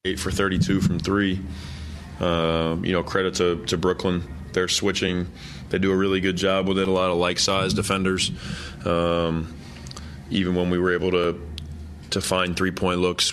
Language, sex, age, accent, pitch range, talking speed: English, male, 20-39, American, 85-95 Hz, 170 wpm